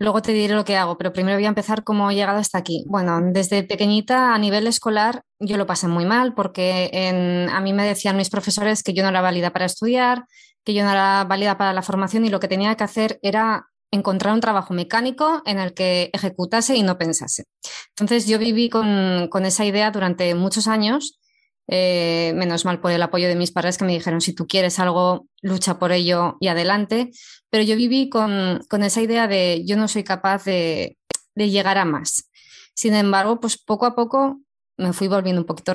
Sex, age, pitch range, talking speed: female, 20-39, 185-225 Hz, 215 wpm